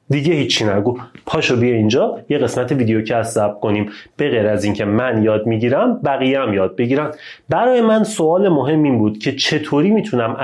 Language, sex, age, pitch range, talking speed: Persian, male, 30-49, 115-175 Hz, 190 wpm